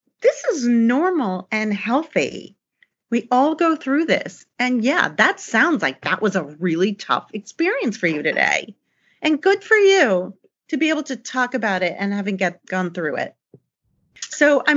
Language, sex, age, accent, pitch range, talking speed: English, female, 40-59, American, 185-280 Hz, 170 wpm